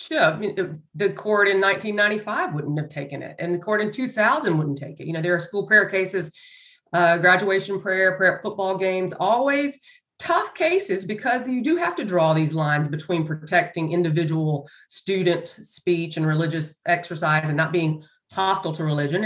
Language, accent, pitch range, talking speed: English, American, 160-205 Hz, 170 wpm